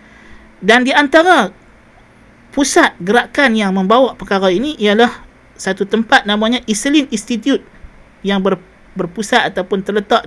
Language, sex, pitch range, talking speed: Malay, male, 200-250 Hz, 115 wpm